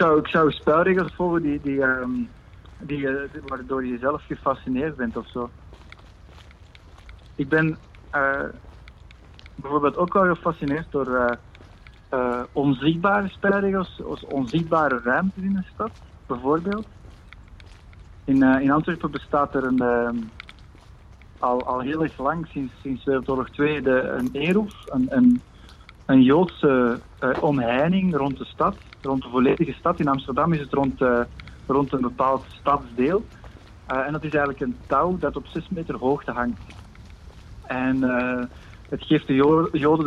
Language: Dutch